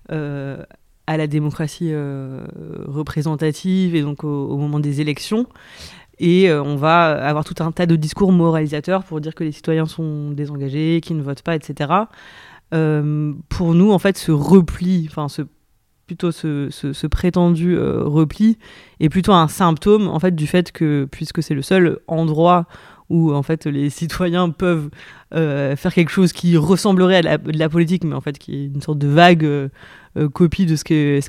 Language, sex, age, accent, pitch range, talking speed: French, female, 30-49, French, 150-175 Hz, 185 wpm